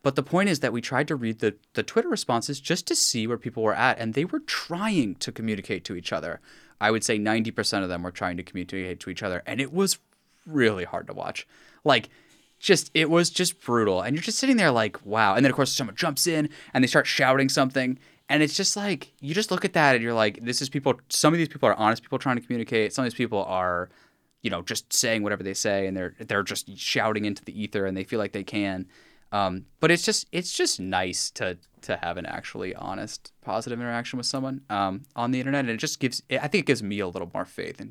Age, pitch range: 10-29, 105-140 Hz